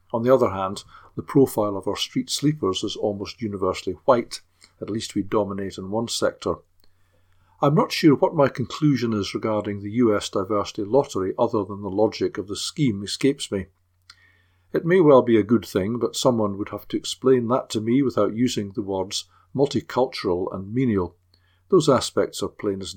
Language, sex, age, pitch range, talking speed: English, male, 50-69, 95-120 Hz, 185 wpm